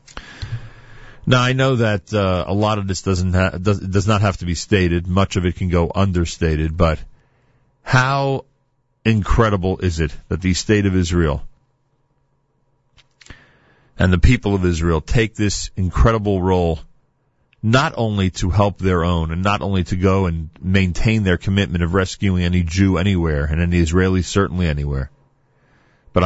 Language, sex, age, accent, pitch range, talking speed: English, male, 40-59, American, 85-110 Hz, 160 wpm